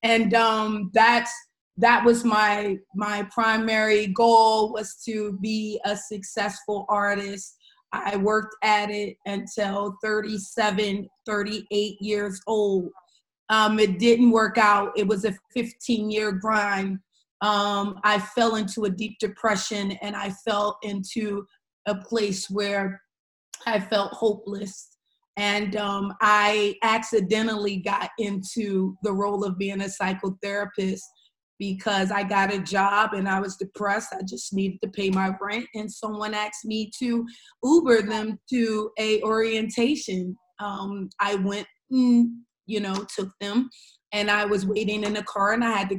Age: 30-49